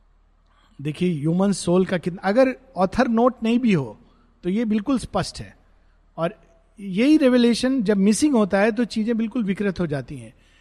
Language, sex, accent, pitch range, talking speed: Hindi, male, native, 135-220 Hz, 170 wpm